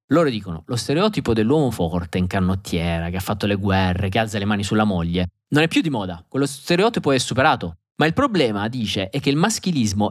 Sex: male